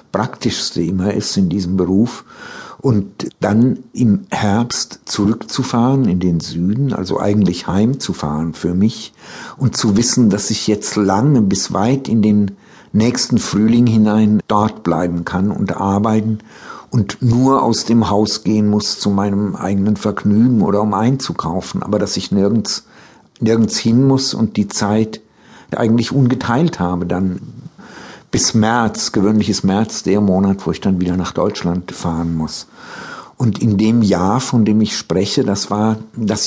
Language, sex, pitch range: German, male, 100-115 Hz